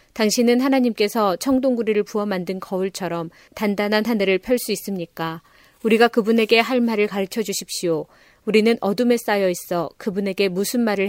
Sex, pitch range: female, 190-225 Hz